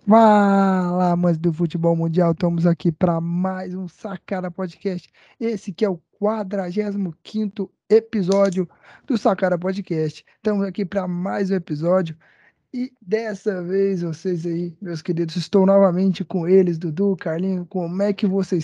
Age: 20-39